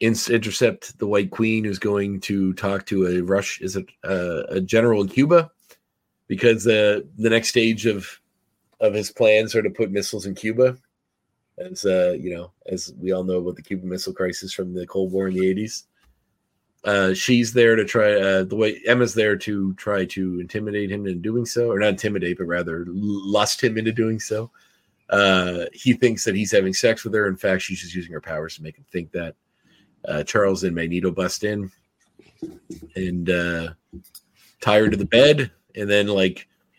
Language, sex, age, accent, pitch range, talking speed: English, male, 40-59, American, 95-115 Hz, 195 wpm